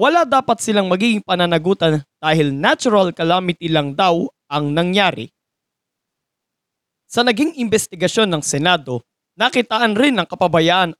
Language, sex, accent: English, male, Filipino